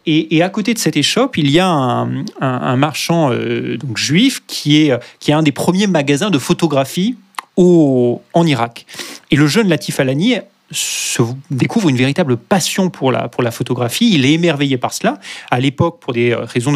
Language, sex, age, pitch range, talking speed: French, male, 30-49, 130-170 Hz, 195 wpm